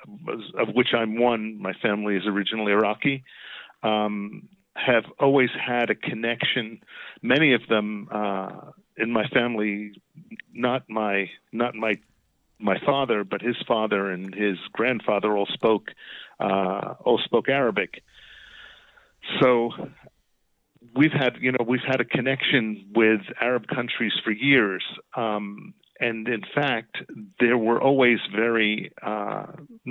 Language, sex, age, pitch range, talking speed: English, male, 50-69, 105-120 Hz, 130 wpm